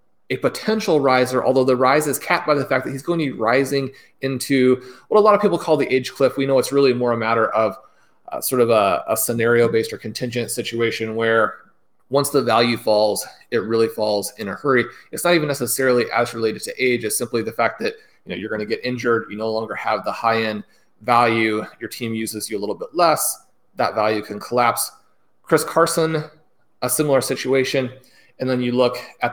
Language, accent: English, American